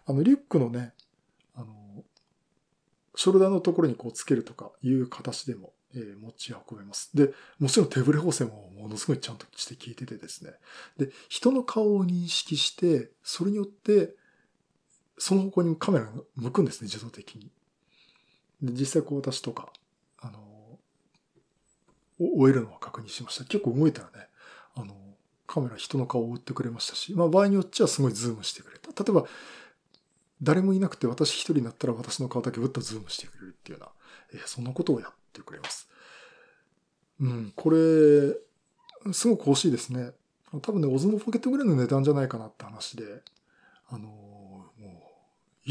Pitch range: 120-175 Hz